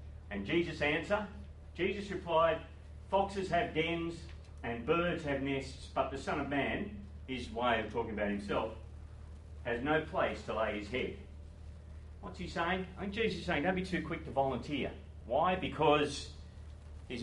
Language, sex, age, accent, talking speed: English, male, 40-59, Australian, 165 wpm